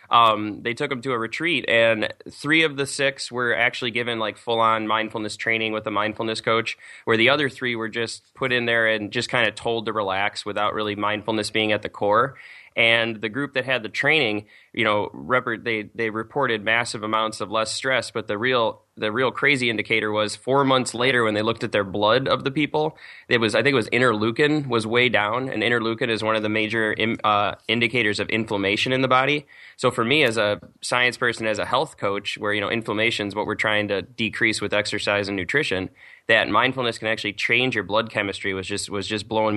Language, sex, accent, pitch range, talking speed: English, male, American, 105-120 Hz, 225 wpm